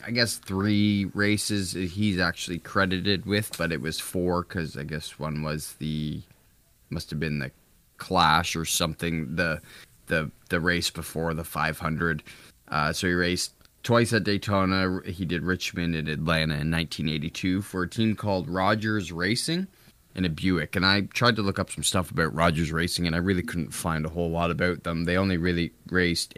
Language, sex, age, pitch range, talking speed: English, male, 20-39, 80-95 Hz, 180 wpm